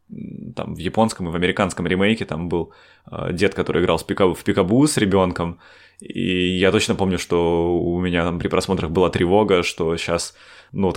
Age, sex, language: 20-39, male, Russian